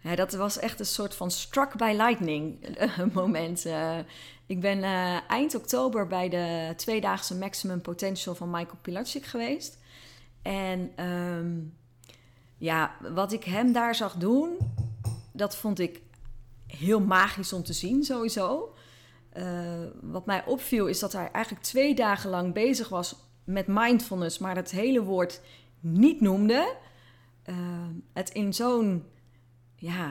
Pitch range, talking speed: 160-225 Hz, 135 wpm